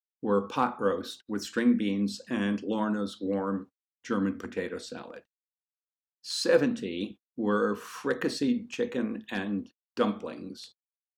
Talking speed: 95 wpm